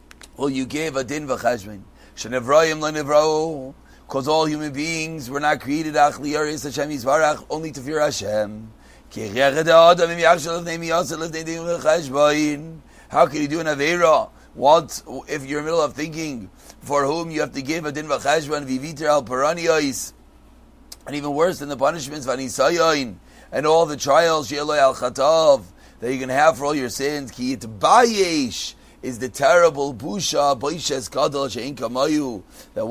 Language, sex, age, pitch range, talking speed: English, male, 30-49, 130-155 Hz, 140 wpm